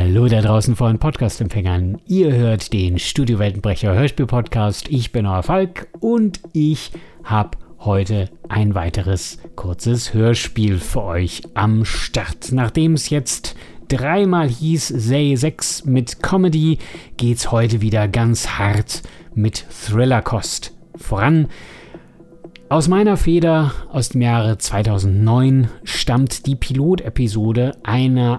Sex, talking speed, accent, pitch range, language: male, 120 wpm, German, 110-140 Hz, German